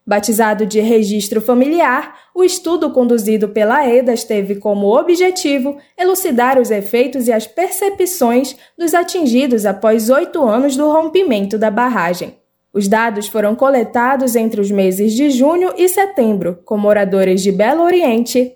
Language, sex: Portuguese, female